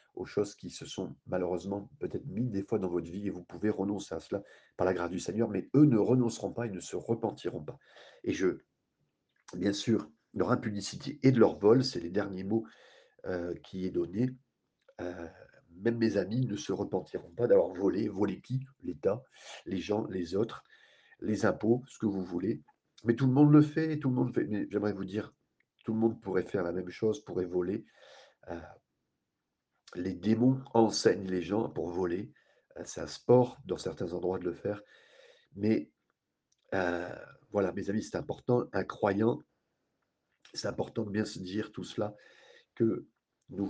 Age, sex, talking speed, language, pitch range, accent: 40-59, male, 185 wpm, French, 90-120 Hz, French